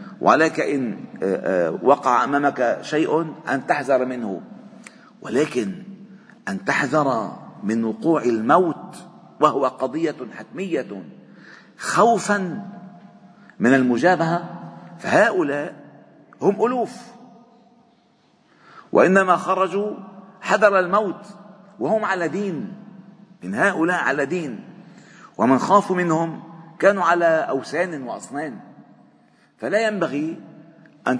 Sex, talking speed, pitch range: male, 85 wpm, 140-205 Hz